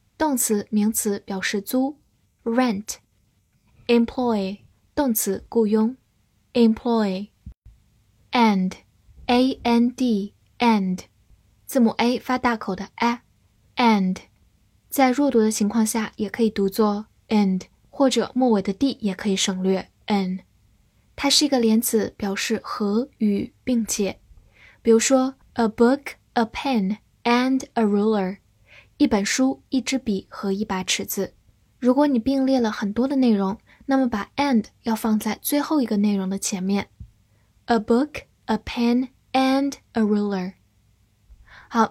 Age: 10-29